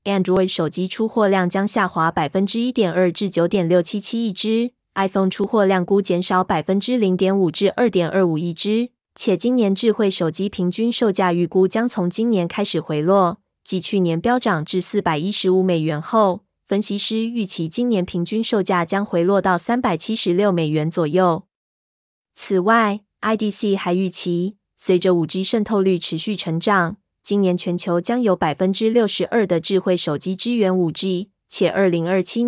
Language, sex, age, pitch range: Chinese, female, 20-39, 175-215 Hz